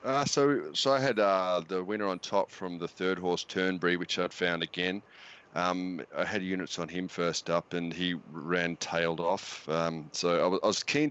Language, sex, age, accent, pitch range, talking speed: English, male, 30-49, Australian, 85-110 Hz, 210 wpm